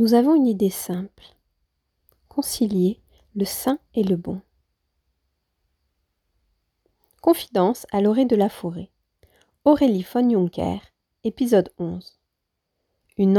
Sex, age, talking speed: female, 40-59, 105 wpm